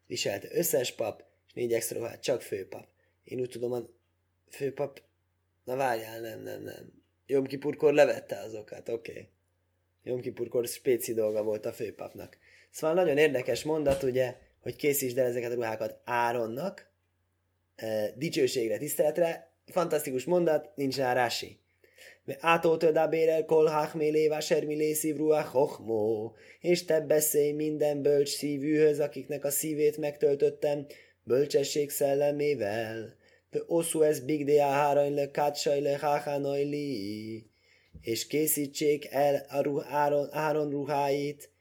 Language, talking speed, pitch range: Hungarian, 120 wpm, 115-150 Hz